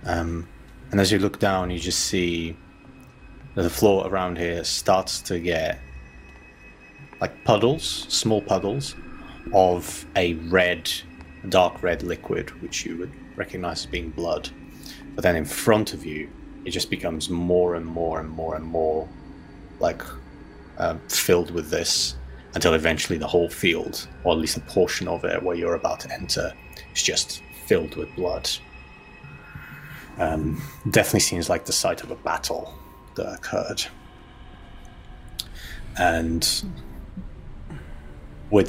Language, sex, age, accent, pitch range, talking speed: English, male, 30-49, British, 80-95 Hz, 140 wpm